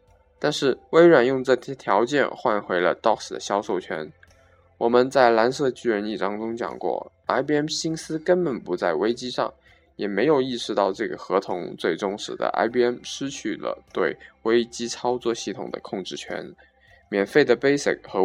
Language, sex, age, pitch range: Chinese, male, 20-39, 105-140 Hz